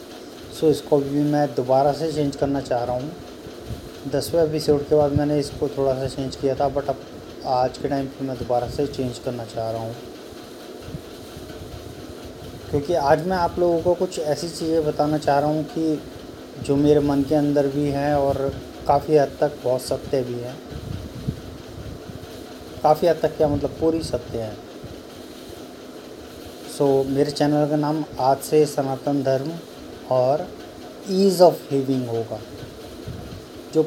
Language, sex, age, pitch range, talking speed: Hindi, male, 30-49, 130-150 Hz, 165 wpm